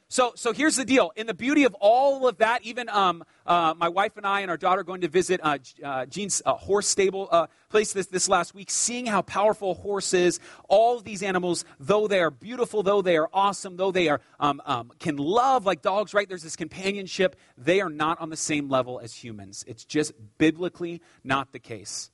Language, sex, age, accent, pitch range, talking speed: English, male, 30-49, American, 145-195 Hz, 225 wpm